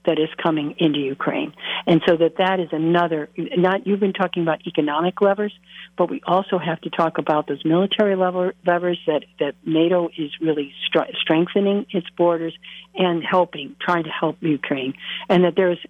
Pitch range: 165-200 Hz